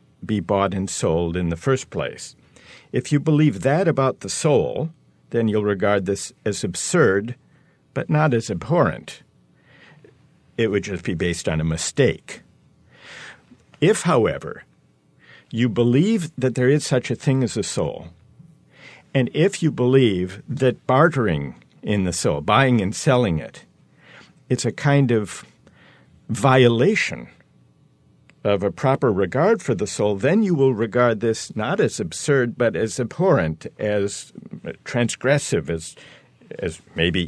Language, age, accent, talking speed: English, 50-69, American, 140 wpm